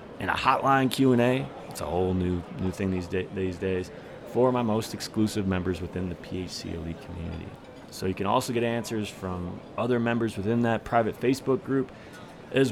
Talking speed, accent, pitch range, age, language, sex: 185 wpm, American, 90-115 Hz, 30-49, English, male